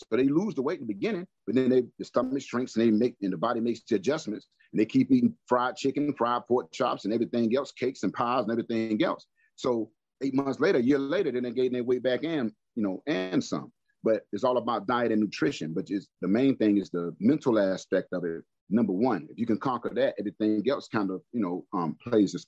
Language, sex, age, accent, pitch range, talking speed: English, male, 40-59, American, 100-135 Hz, 245 wpm